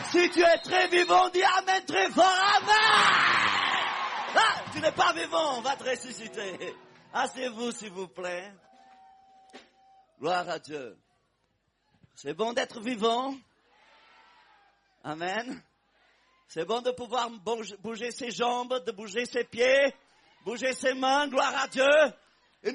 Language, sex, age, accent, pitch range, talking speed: English, male, 50-69, French, 245-350 Hz, 130 wpm